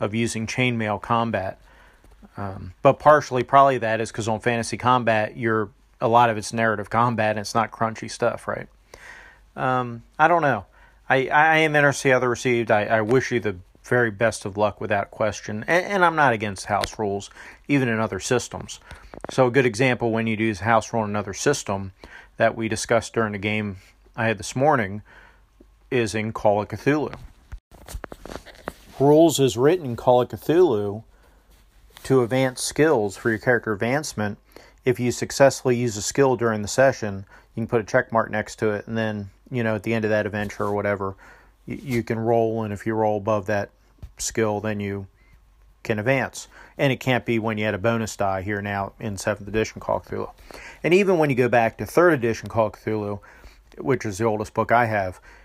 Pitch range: 105-125 Hz